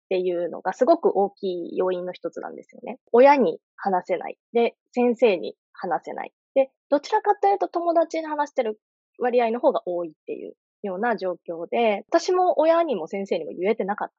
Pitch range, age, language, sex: 180-285 Hz, 20-39, Japanese, female